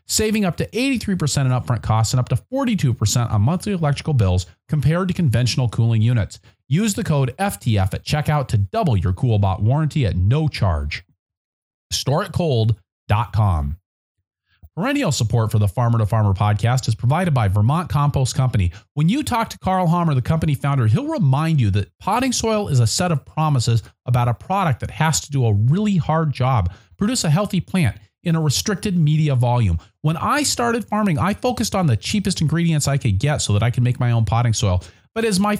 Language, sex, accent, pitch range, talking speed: English, male, American, 115-180 Hz, 190 wpm